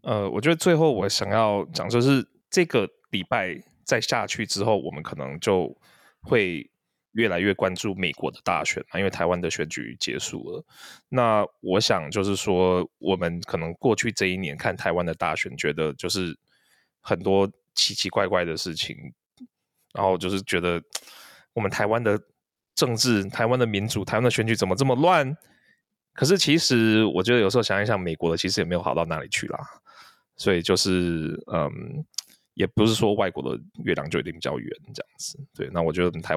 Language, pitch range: Chinese, 85-115 Hz